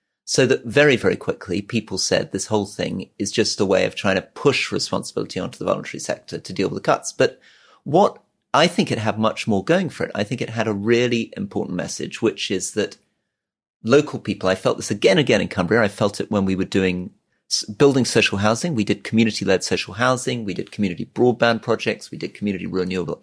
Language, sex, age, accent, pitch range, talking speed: English, male, 40-59, British, 105-130 Hz, 215 wpm